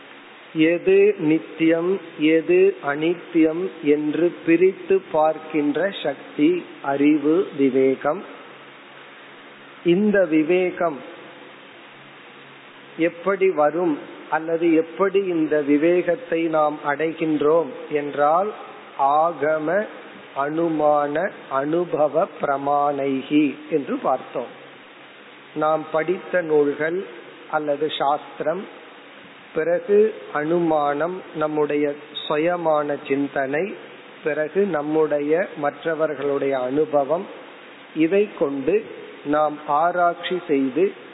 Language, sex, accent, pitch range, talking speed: Tamil, male, native, 145-175 Hz, 55 wpm